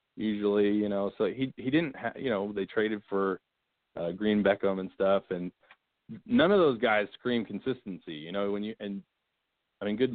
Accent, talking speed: American, 195 wpm